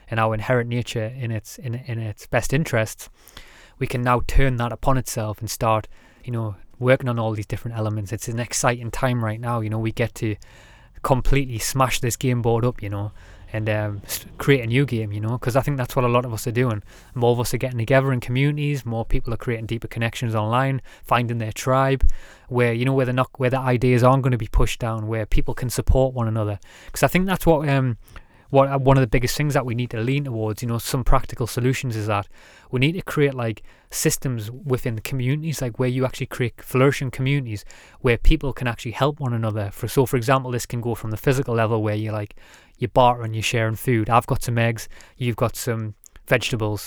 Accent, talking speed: British, 230 wpm